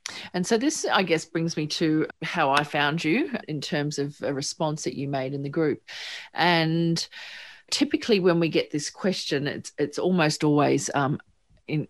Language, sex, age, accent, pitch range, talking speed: English, female, 40-59, Australian, 145-185 Hz, 180 wpm